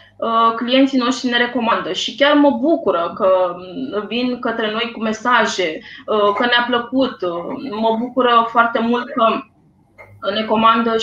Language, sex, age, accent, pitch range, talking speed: Romanian, female, 20-39, native, 205-240 Hz, 130 wpm